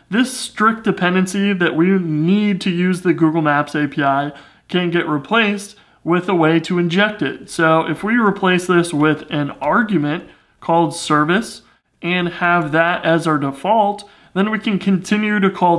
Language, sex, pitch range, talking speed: English, male, 150-190 Hz, 165 wpm